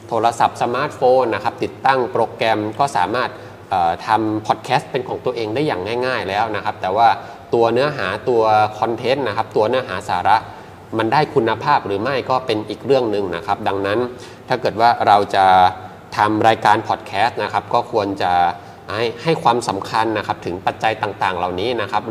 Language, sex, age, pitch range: Thai, male, 20-39, 100-125 Hz